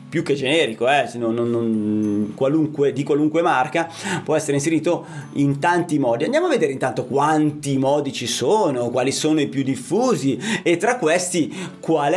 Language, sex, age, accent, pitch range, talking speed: Italian, male, 30-49, native, 140-225 Hz, 170 wpm